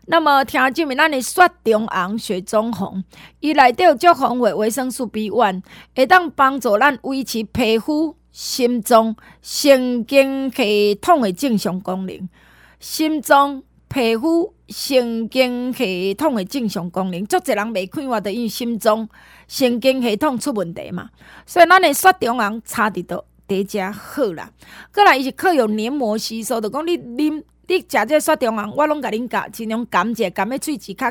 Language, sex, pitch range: Chinese, female, 210-290 Hz